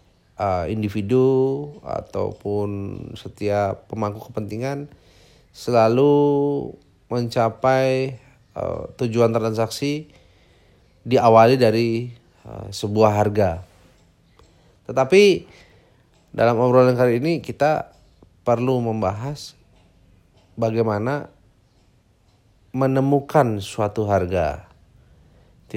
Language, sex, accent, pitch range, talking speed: Indonesian, male, native, 105-130 Hz, 65 wpm